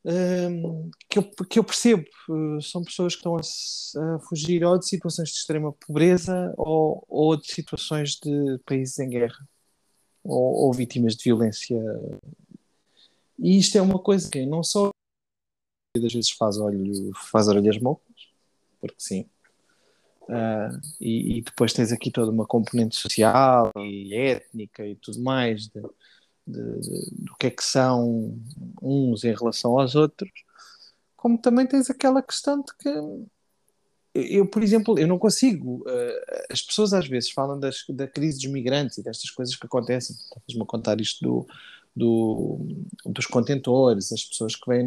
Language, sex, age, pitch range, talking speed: Portuguese, male, 20-39, 115-175 Hz, 155 wpm